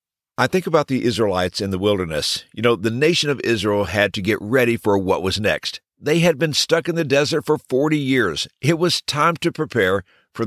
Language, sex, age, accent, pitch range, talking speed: English, male, 50-69, American, 115-160 Hz, 220 wpm